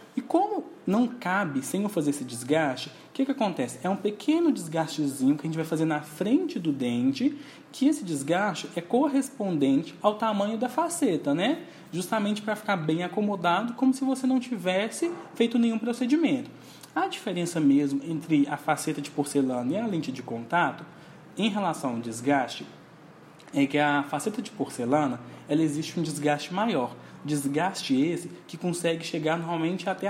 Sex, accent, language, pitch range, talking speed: male, Brazilian, Portuguese, 155-250 Hz, 165 wpm